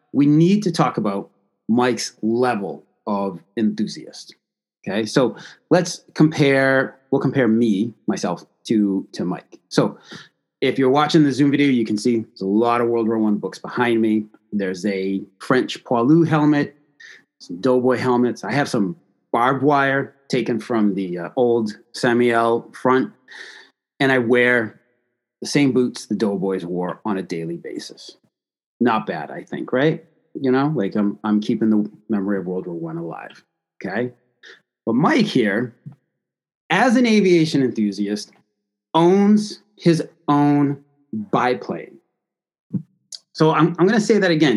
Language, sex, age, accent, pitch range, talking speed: English, male, 30-49, American, 110-145 Hz, 150 wpm